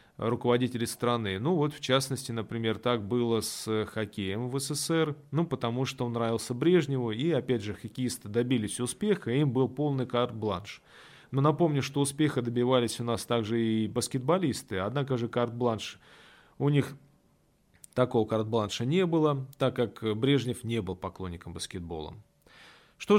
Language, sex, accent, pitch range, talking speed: Russian, male, native, 115-140 Hz, 145 wpm